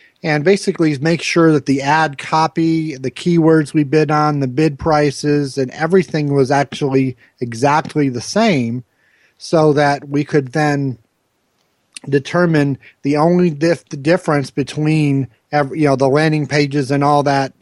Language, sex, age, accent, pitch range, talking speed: English, male, 40-59, American, 135-155 Hz, 145 wpm